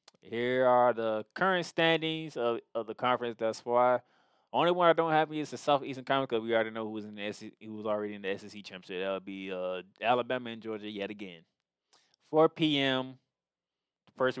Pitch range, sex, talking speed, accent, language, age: 120-165 Hz, male, 200 wpm, American, English, 20-39